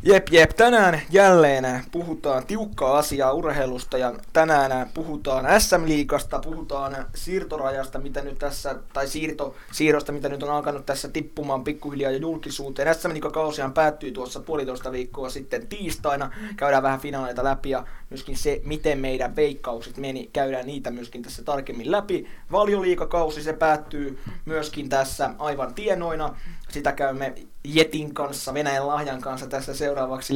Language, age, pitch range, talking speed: Finnish, 20-39, 130-155 Hz, 135 wpm